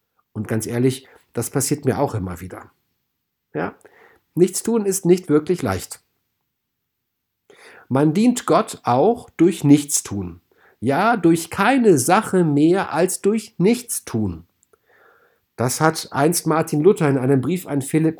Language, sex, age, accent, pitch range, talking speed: German, male, 50-69, German, 115-170 Hz, 125 wpm